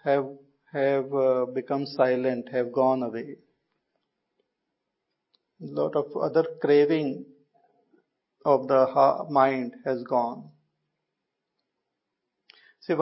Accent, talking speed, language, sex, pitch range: Indian, 90 wpm, English, male, 135-180 Hz